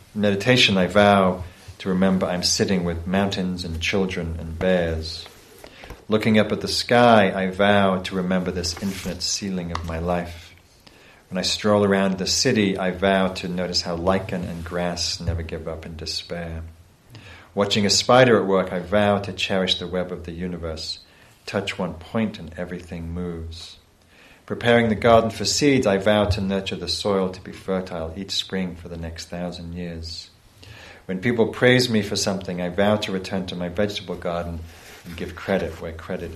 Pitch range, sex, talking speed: 85-100 Hz, male, 175 wpm